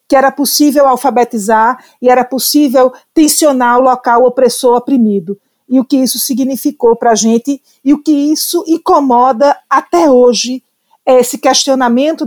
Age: 50-69